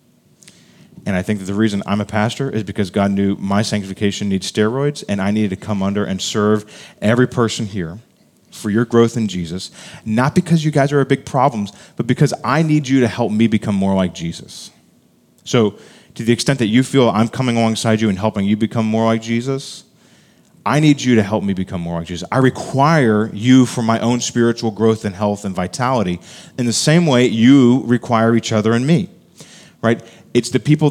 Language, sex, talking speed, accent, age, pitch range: English, male, 210 wpm, American, 30-49, 105-125 Hz